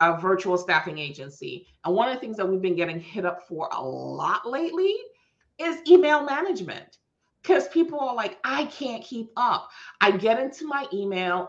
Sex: female